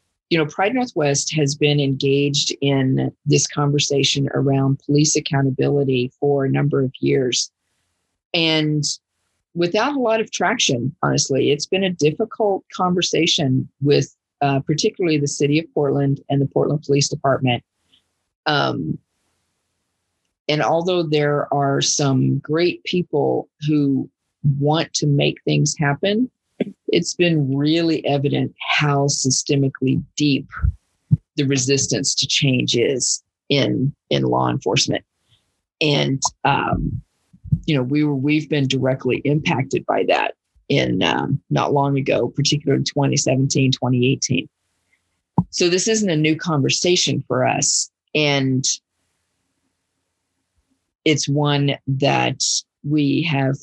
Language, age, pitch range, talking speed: English, 40-59, 130-150 Hz, 120 wpm